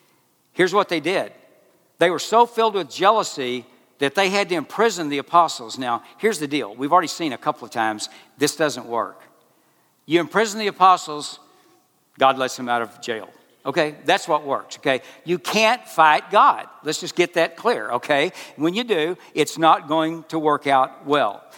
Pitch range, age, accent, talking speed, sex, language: 135-190 Hz, 60-79, American, 185 wpm, male, English